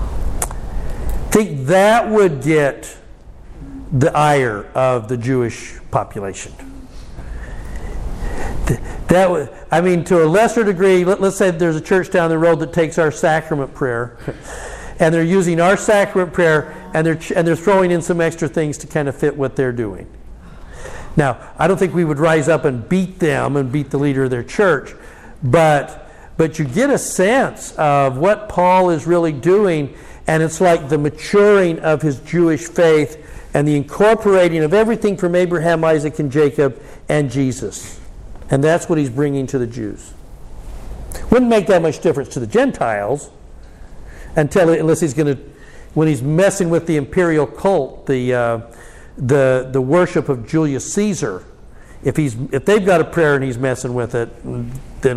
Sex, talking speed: male, 170 wpm